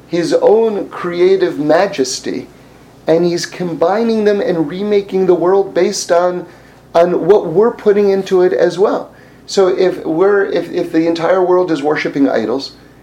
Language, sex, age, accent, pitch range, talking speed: English, male, 30-49, American, 140-185 Hz, 150 wpm